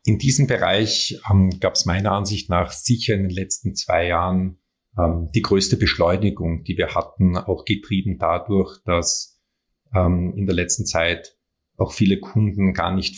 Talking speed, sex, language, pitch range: 160 wpm, male, German, 90-110 Hz